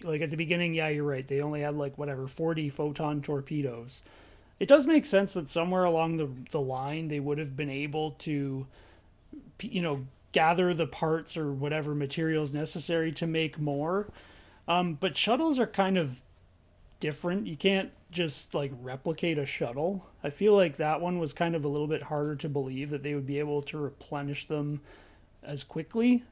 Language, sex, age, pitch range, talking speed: English, male, 30-49, 145-185 Hz, 185 wpm